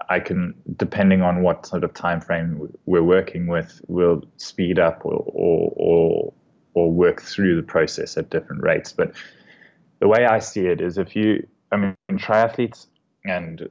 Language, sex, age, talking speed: English, male, 20-39, 170 wpm